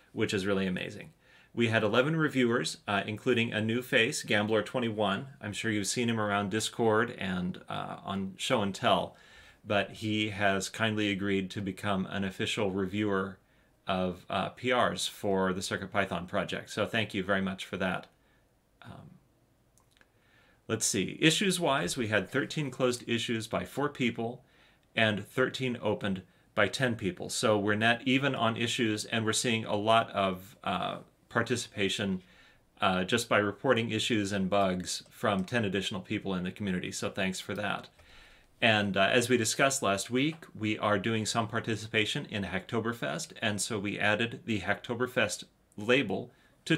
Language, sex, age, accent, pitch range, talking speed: English, male, 30-49, American, 100-120 Hz, 160 wpm